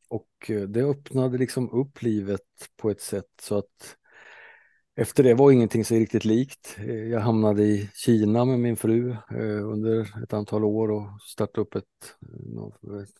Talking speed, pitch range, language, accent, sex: 160 wpm, 105-120 Hz, Swedish, Norwegian, male